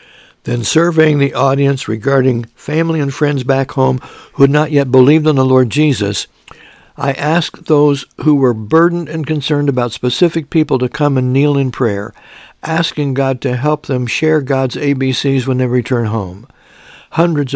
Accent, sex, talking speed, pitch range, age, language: American, male, 170 wpm, 125-150 Hz, 60-79, English